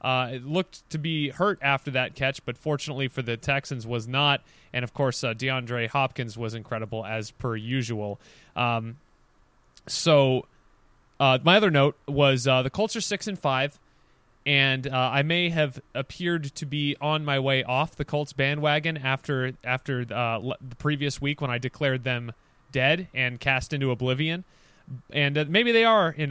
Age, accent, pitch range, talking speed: 20-39, American, 125-155 Hz, 180 wpm